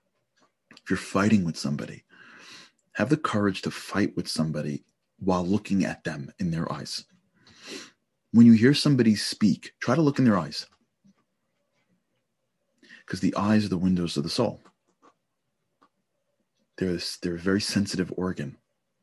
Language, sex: English, male